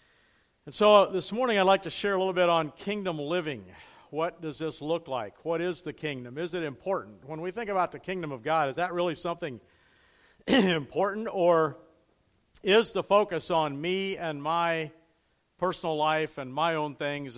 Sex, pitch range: male, 145-180 Hz